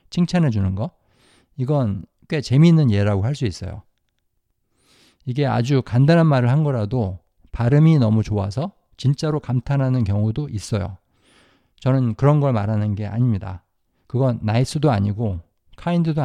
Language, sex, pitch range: Korean, male, 105-145 Hz